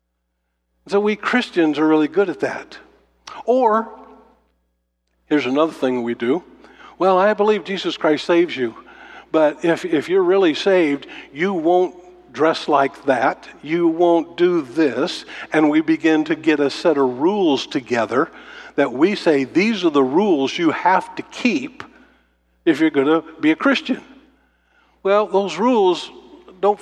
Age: 50-69